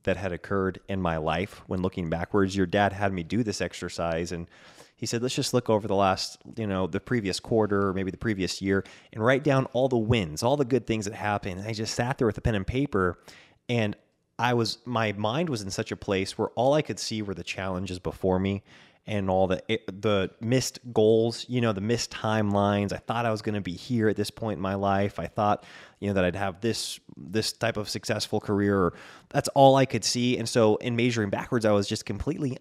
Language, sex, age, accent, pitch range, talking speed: English, male, 20-39, American, 95-115 Hz, 235 wpm